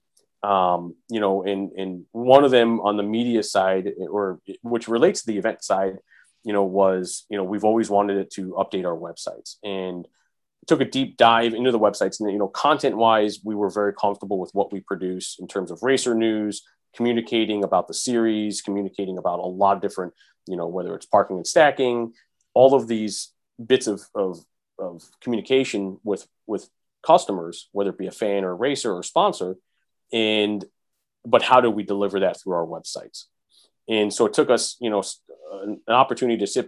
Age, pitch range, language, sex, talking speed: 30-49, 95-115 Hz, English, male, 195 wpm